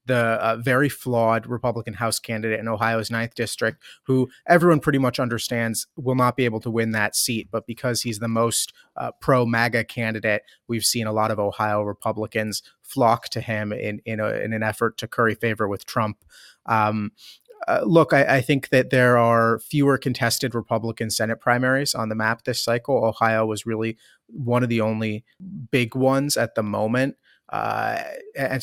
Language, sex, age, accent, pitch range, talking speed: English, male, 30-49, American, 110-125 Hz, 175 wpm